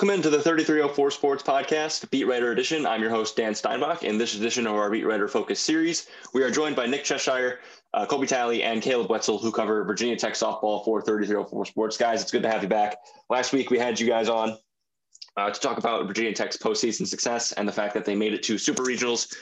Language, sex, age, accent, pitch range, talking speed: English, male, 20-39, American, 105-140 Hz, 230 wpm